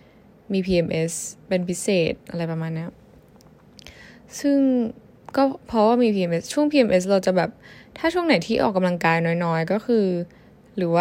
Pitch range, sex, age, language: 180-225 Hz, female, 10-29, Thai